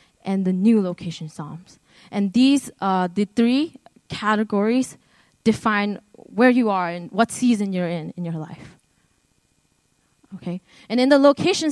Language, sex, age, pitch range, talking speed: English, female, 20-39, 185-255 Hz, 145 wpm